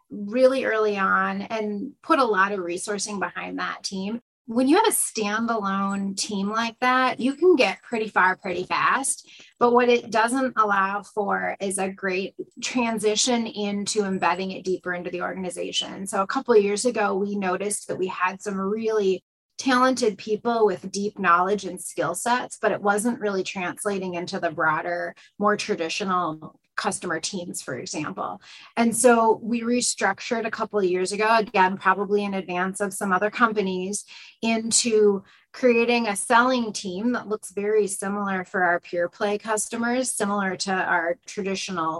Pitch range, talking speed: 190-225 Hz, 165 wpm